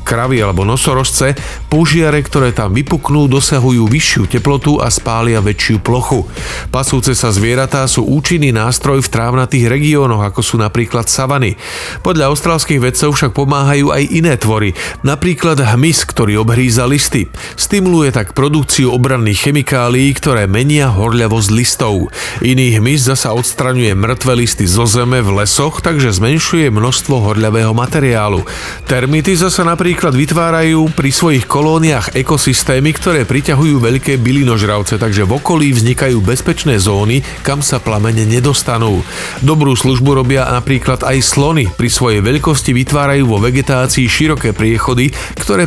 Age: 40-59